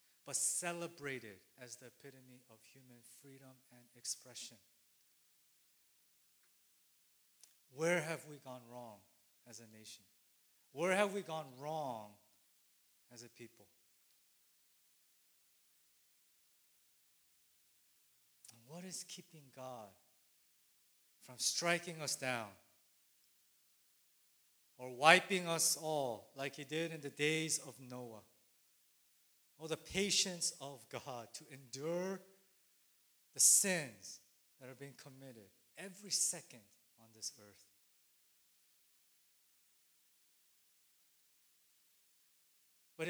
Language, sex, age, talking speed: English, male, 40-59, 90 wpm